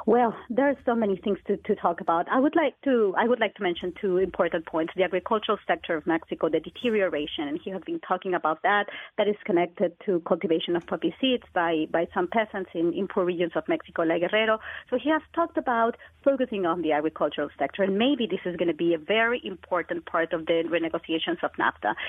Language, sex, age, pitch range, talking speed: English, female, 30-49, 175-225 Hz, 225 wpm